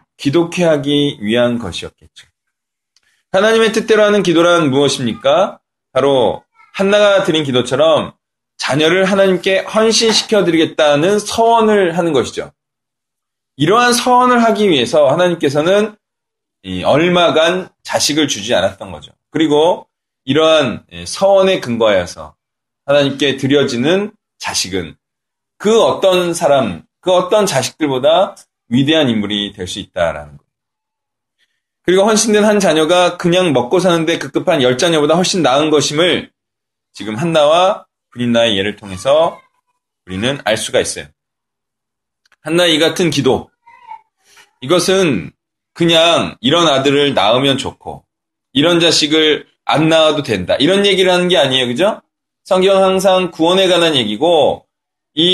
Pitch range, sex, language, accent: 140-195 Hz, male, Korean, native